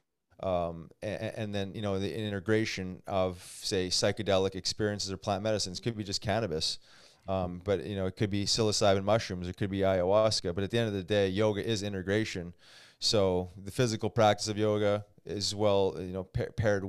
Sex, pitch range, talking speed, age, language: male, 95-115 Hz, 190 wpm, 30-49, English